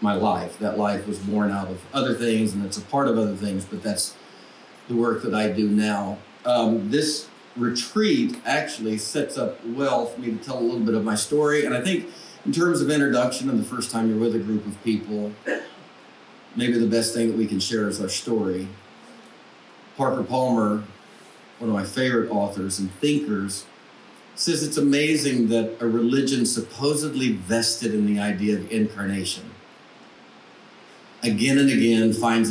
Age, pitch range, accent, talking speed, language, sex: 40-59, 105-130 Hz, American, 175 wpm, English, male